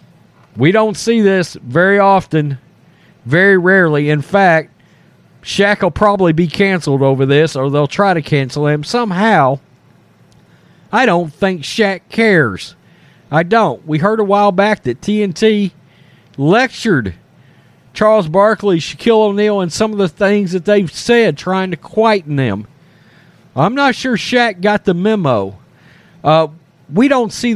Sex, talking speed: male, 145 wpm